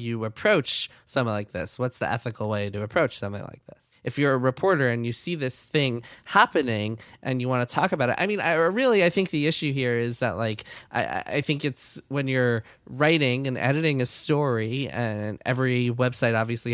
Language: English